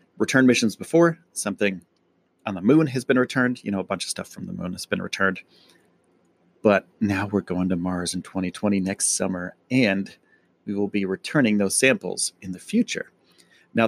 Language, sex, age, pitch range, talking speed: English, male, 30-49, 95-125 Hz, 185 wpm